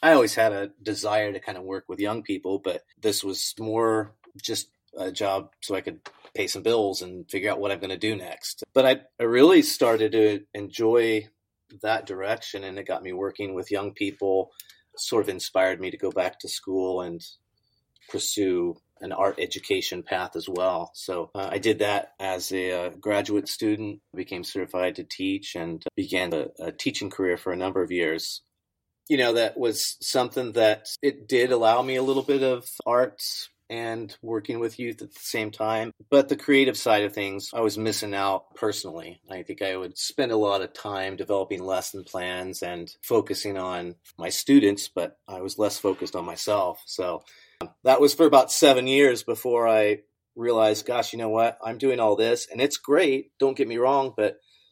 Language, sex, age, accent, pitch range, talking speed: English, male, 30-49, American, 95-120 Hz, 195 wpm